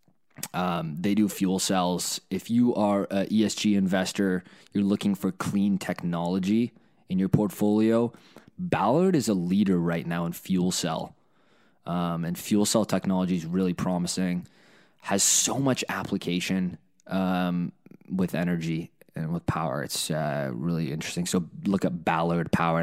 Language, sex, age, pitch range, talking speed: English, male, 20-39, 85-110 Hz, 145 wpm